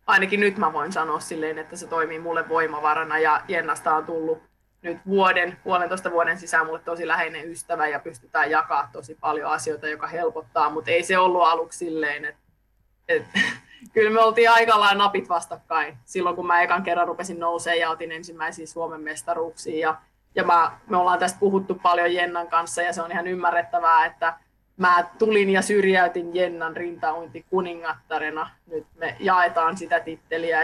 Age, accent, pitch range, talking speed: 20-39, native, 165-190 Hz, 165 wpm